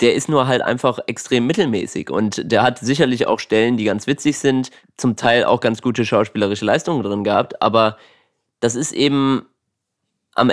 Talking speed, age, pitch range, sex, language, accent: 175 wpm, 20-39, 115-135 Hz, male, German, German